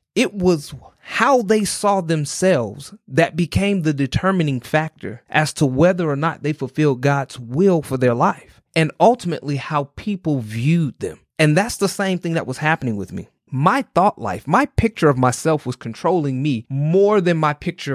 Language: English